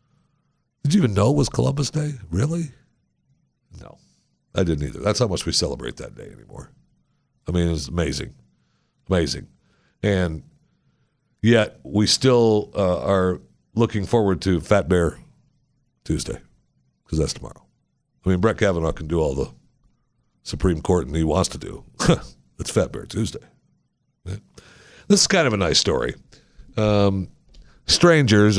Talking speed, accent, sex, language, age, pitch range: 150 wpm, American, male, English, 60-79, 90-130 Hz